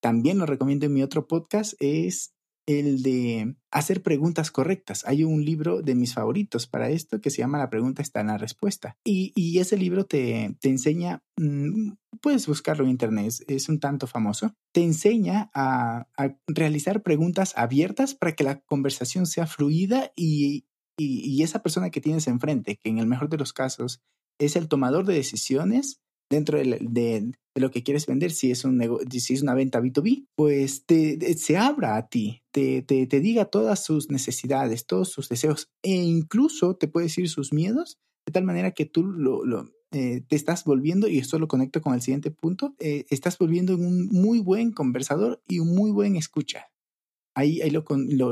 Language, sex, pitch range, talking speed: Spanish, male, 130-175 Hz, 190 wpm